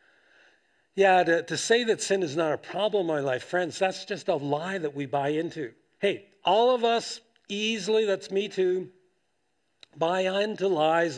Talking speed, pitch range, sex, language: 175 wpm, 165-205 Hz, male, English